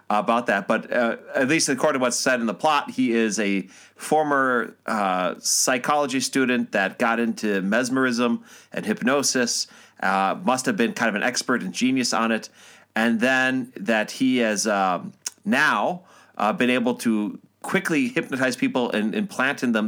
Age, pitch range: 30-49, 110-145 Hz